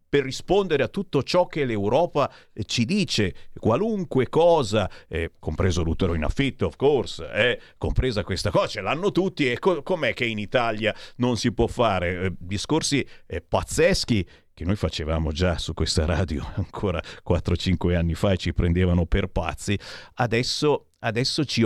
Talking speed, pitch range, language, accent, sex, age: 160 wpm, 95-140 Hz, Italian, native, male, 50-69